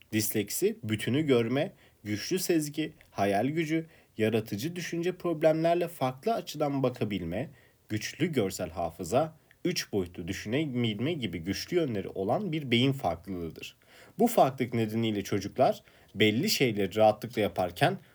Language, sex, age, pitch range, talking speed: Turkish, male, 40-59, 105-145 Hz, 110 wpm